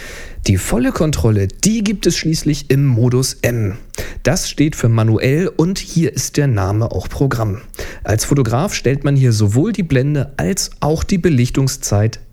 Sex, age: male, 40-59